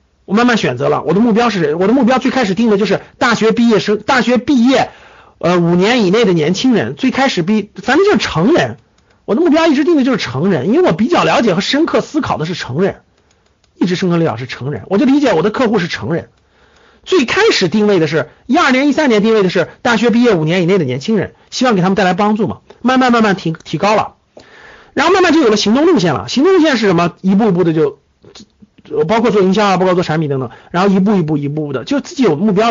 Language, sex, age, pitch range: Chinese, male, 50-69, 170-255 Hz